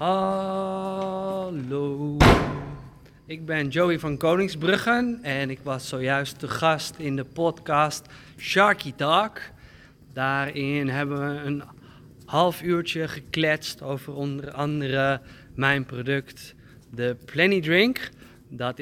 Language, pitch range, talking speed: Dutch, 125-165 Hz, 105 wpm